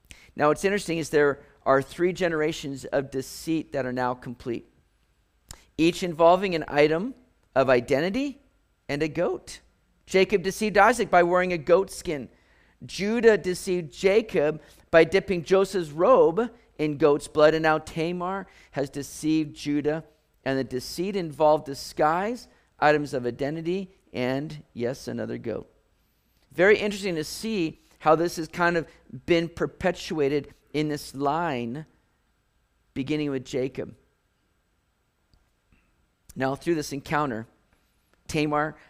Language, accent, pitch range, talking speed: English, American, 140-185 Hz, 125 wpm